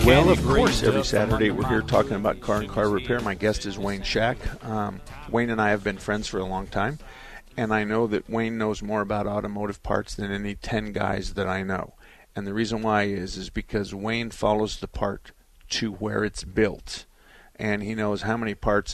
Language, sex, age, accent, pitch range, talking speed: English, male, 50-69, American, 100-110 Hz, 210 wpm